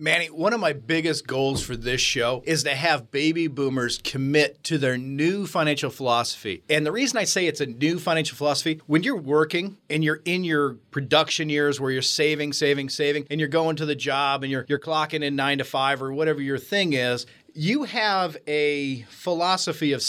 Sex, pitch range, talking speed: male, 140-170 Hz, 205 wpm